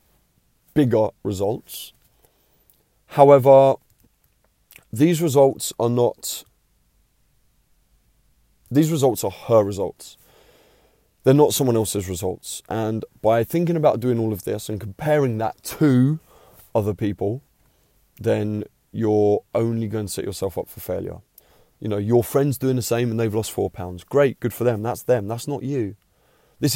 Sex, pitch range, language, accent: male, 105-140 Hz, English, British